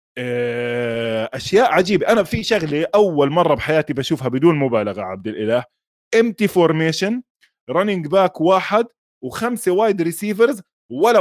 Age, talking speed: 20-39, 120 wpm